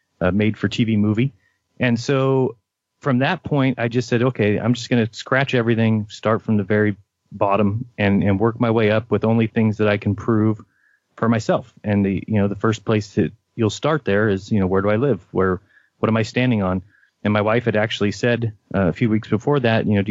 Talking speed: 235 wpm